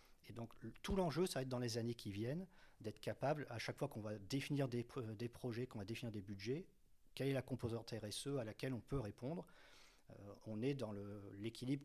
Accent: French